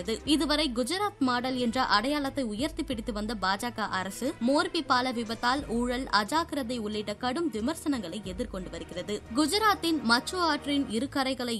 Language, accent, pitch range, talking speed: Tamil, native, 225-290 Hz, 125 wpm